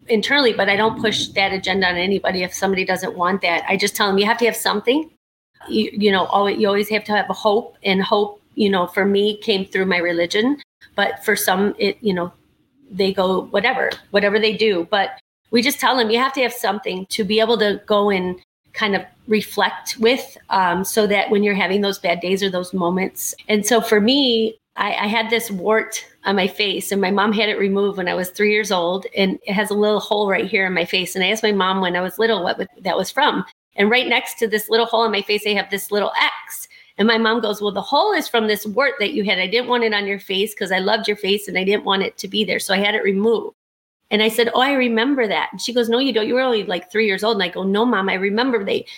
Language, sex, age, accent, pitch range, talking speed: English, female, 30-49, American, 195-230 Hz, 265 wpm